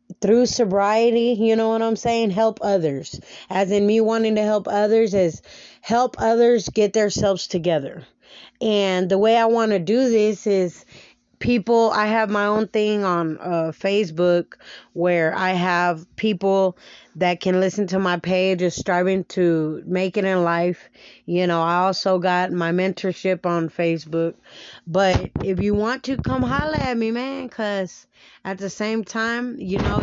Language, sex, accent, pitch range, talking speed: English, female, American, 180-215 Hz, 165 wpm